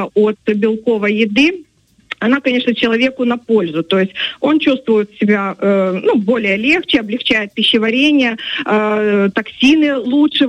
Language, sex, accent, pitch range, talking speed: Russian, female, native, 220-275 Hz, 115 wpm